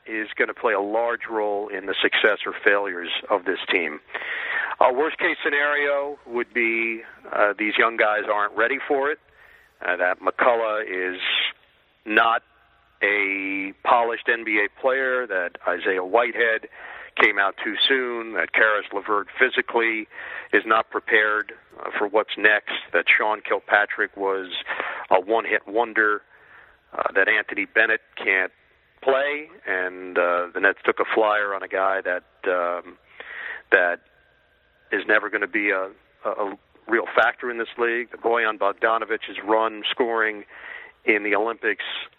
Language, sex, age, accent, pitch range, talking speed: English, male, 50-69, American, 100-125 Hz, 145 wpm